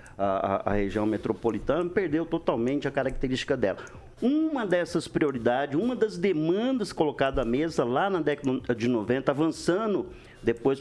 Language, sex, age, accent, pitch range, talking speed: Portuguese, male, 50-69, Brazilian, 120-160 Hz, 140 wpm